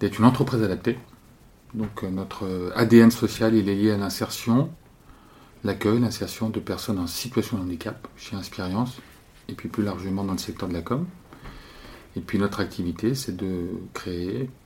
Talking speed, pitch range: 165 wpm, 95-115 Hz